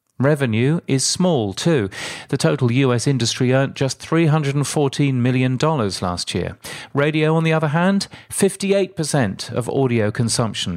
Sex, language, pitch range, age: male, English, 115-155 Hz, 40-59